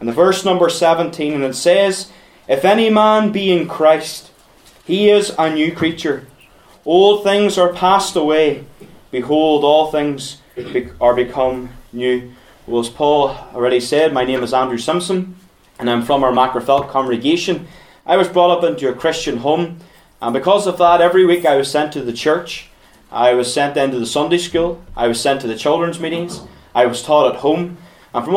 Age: 20-39